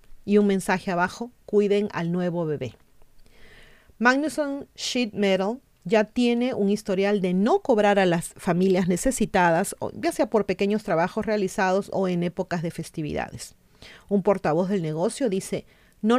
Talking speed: 145 wpm